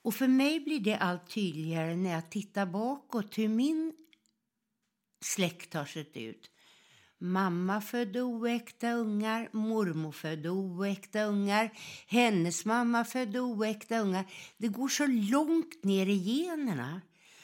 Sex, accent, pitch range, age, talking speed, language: female, native, 185-250 Hz, 60-79, 125 wpm, Swedish